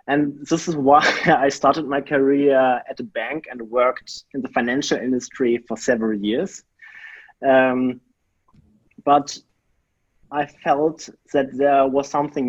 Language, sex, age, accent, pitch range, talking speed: English, male, 30-49, German, 130-160 Hz, 135 wpm